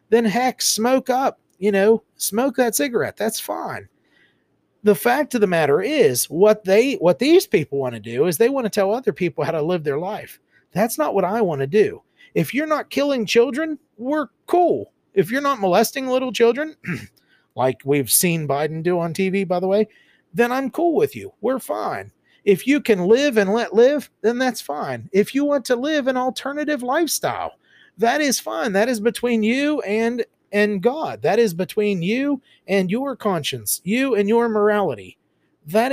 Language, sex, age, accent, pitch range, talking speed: English, male, 40-59, American, 170-250 Hz, 190 wpm